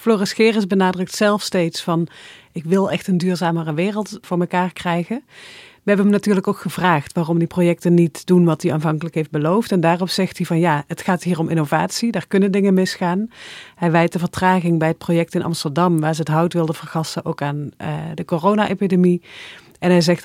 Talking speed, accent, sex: 205 wpm, Dutch, female